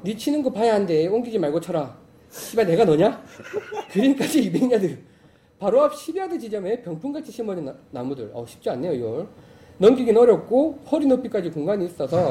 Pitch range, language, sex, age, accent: 170-260 Hz, Korean, male, 30-49, native